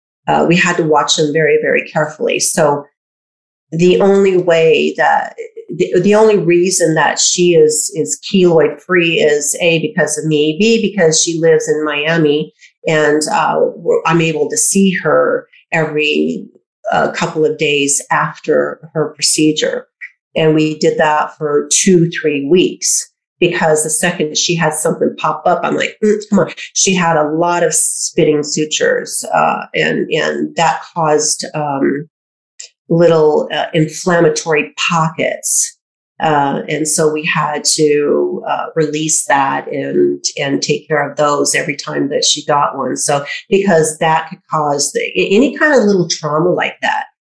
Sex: female